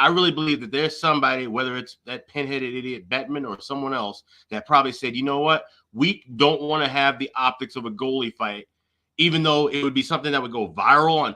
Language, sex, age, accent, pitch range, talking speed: English, male, 30-49, American, 115-150 Hz, 225 wpm